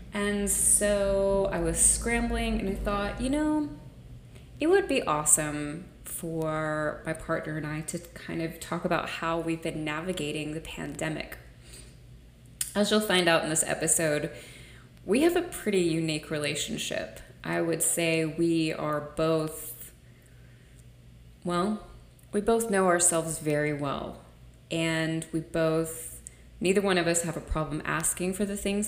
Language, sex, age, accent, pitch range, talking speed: English, female, 20-39, American, 150-180 Hz, 145 wpm